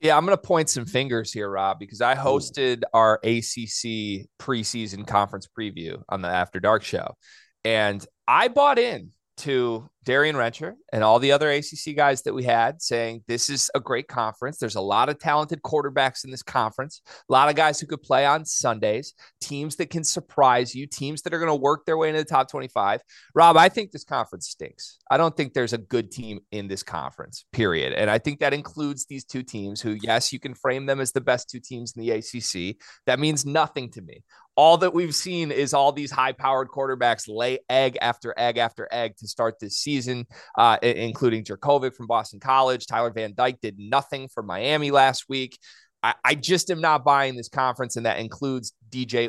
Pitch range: 115-145 Hz